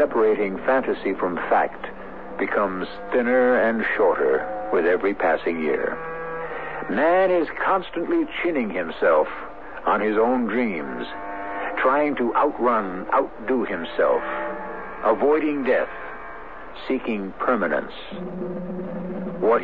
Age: 60-79